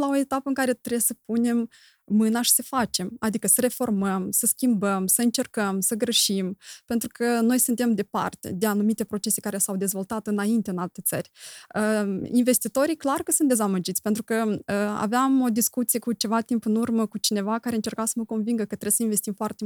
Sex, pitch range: female, 200-240 Hz